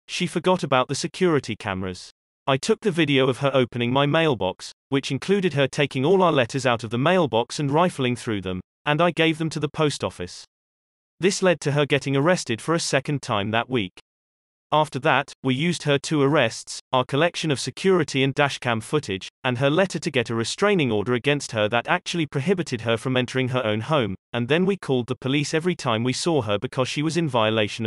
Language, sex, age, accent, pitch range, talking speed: English, male, 30-49, British, 115-160 Hz, 215 wpm